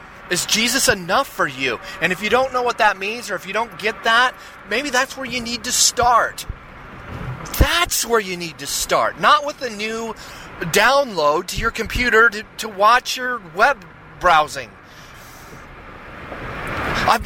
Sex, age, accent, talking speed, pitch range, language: male, 30-49, American, 165 wpm, 170-235 Hz, English